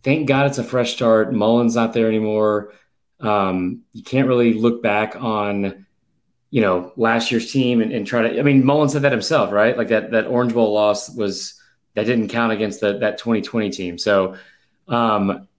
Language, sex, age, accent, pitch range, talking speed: English, male, 30-49, American, 110-135 Hz, 195 wpm